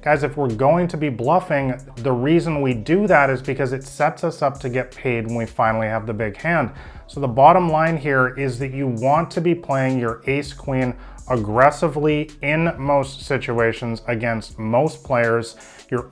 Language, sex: English, male